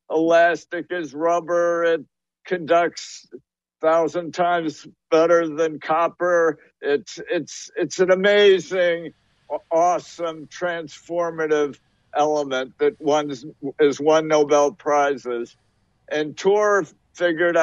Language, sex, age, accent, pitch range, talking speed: English, male, 60-79, American, 150-180 Hz, 100 wpm